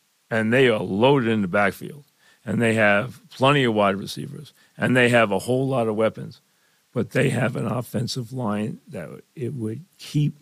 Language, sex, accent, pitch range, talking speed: English, male, American, 110-135 Hz, 185 wpm